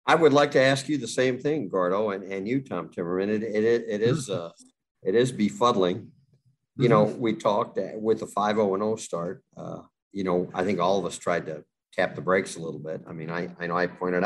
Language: English